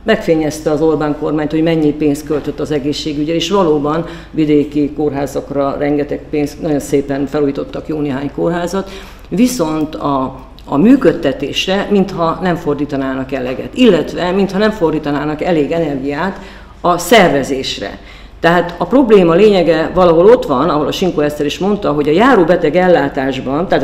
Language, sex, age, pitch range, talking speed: Hungarian, female, 50-69, 150-185 Hz, 140 wpm